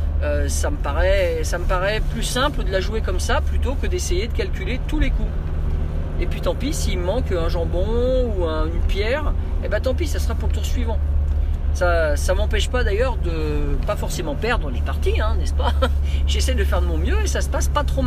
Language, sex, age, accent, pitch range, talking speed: French, male, 40-59, French, 70-75 Hz, 235 wpm